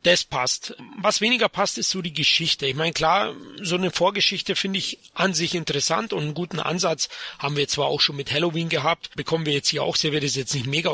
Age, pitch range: 30-49, 145-175 Hz